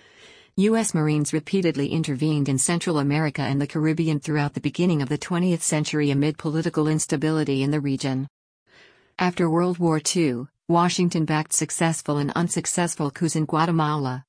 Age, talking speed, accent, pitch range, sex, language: 50-69, 145 wpm, American, 145-165 Hz, female, English